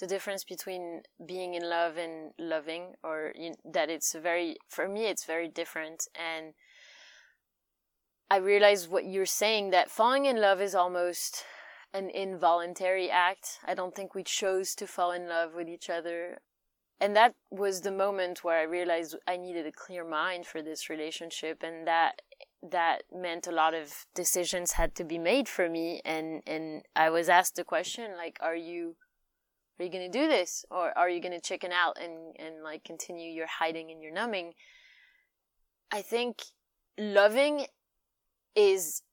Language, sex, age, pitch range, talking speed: English, female, 20-39, 165-200 Hz, 165 wpm